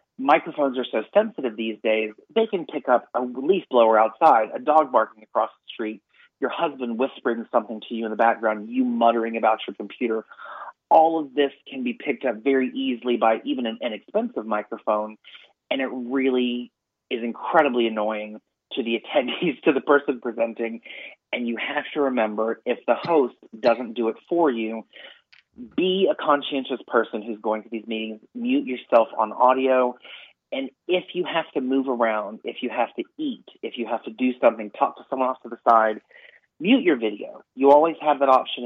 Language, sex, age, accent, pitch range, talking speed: English, male, 30-49, American, 110-135 Hz, 185 wpm